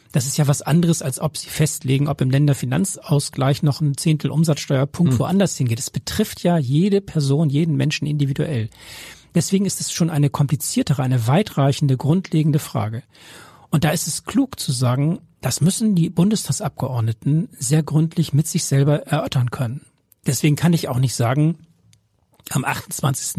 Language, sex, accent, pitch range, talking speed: German, male, German, 130-160 Hz, 155 wpm